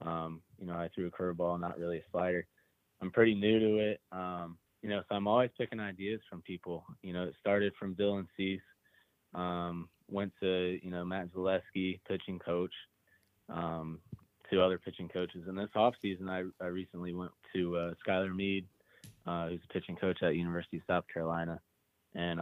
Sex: male